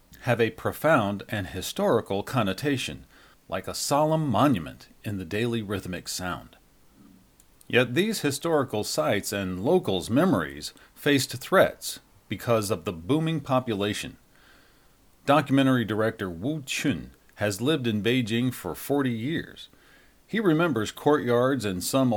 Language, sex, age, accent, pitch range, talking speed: English, male, 40-59, American, 100-135 Hz, 120 wpm